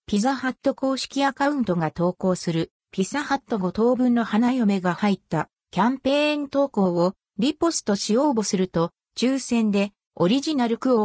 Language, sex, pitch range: Japanese, female, 185-260 Hz